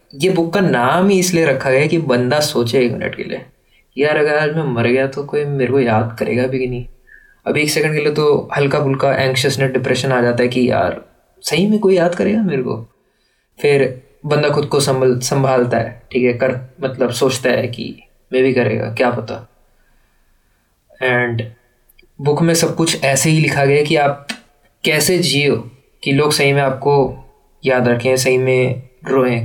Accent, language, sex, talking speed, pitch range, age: native, Hindi, male, 190 wpm, 125-150 Hz, 20-39